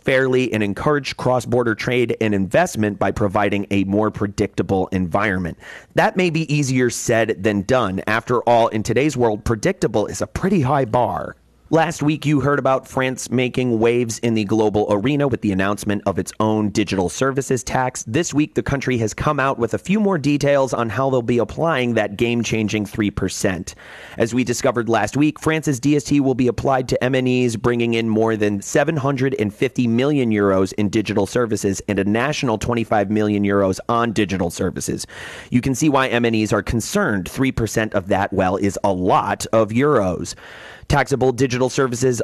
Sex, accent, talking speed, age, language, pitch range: male, American, 175 wpm, 30-49, English, 105-130 Hz